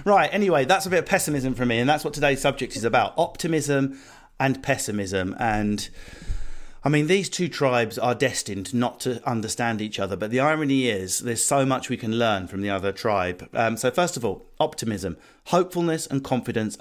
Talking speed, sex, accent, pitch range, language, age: 195 wpm, male, British, 110-150 Hz, English, 40-59